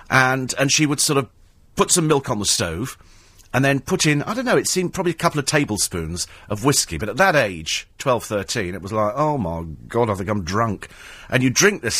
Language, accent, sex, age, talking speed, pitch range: English, British, male, 40-59, 240 wpm, 100-150 Hz